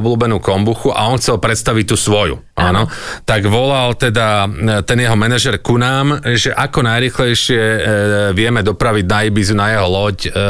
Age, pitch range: 40-59, 95-120 Hz